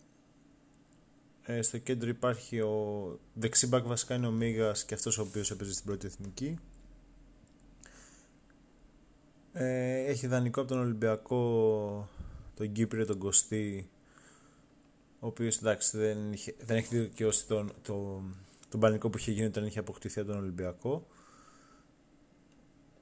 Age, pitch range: 20-39, 105-130 Hz